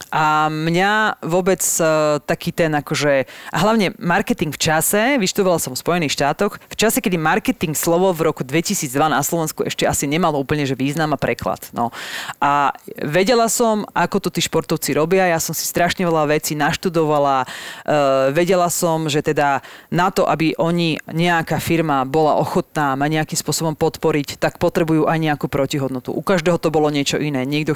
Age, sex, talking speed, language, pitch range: 30-49, female, 170 wpm, Slovak, 150-180 Hz